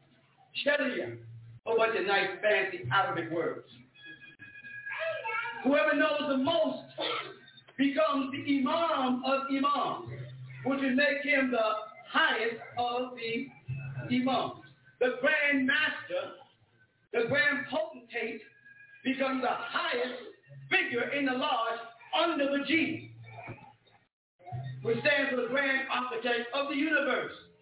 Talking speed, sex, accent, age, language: 110 wpm, male, American, 50-69, English